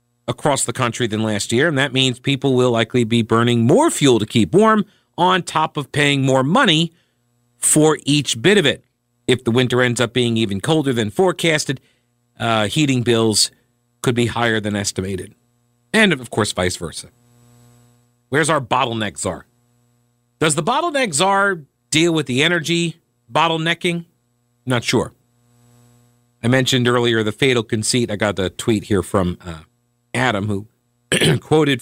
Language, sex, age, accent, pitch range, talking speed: English, male, 50-69, American, 115-145 Hz, 160 wpm